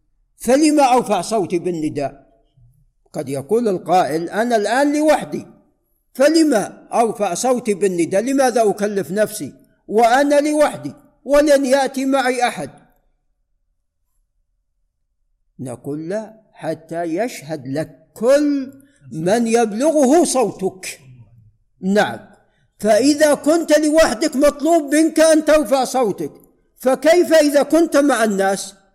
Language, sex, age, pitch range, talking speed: Arabic, male, 60-79, 175-280 Hz, 95 wpm